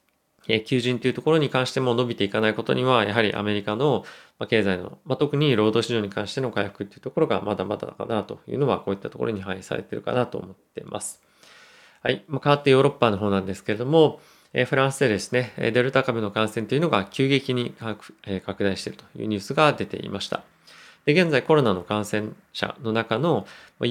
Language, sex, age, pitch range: Japanese, male, 20-39, 105-130 Hz